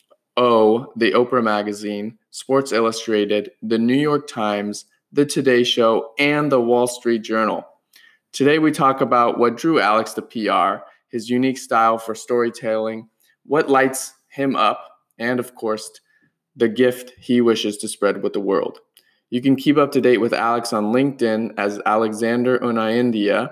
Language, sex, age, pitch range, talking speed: English, male, 20-39, 110-130 Hz, 160 wpm